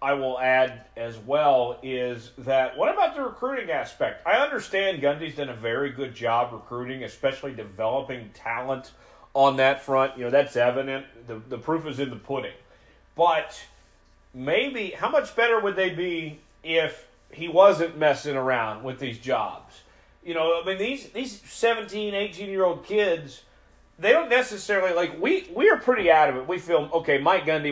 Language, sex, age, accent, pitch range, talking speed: English, male, 40-59, American, 130-195 Hz, 165 wpm